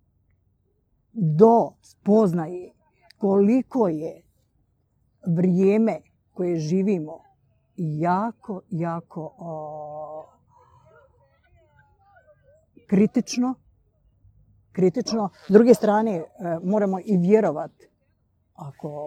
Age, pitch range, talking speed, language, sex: 50-69, 160-200 Hz, 60 wpm, Croatian, female